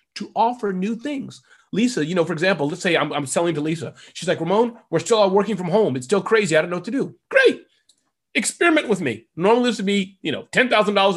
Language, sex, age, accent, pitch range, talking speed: English, male, 30-49, American, 150-225 Hz, 240 wpm